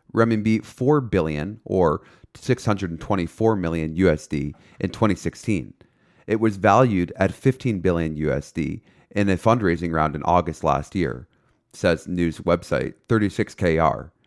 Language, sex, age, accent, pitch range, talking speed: English, male, 30-49, American, 85-110 Hz, 120 wpm